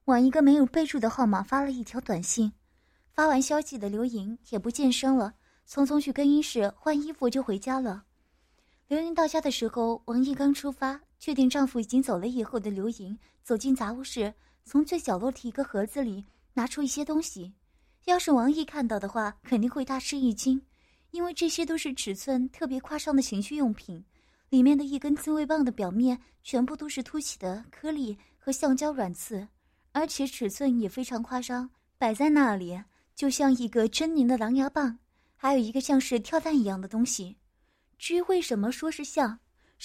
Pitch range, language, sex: 230-295 Hz, Chinese, female